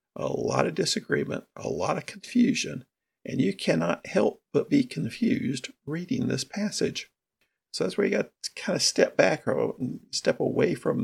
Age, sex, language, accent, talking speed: 50-69, male, English, American, 175 wpm